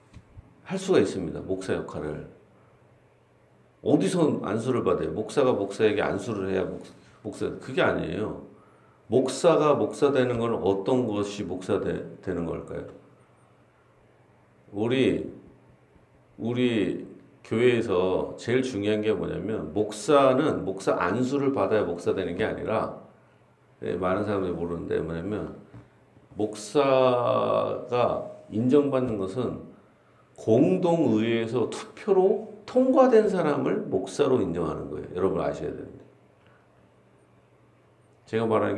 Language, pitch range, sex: Korean, 100-145 Hz, male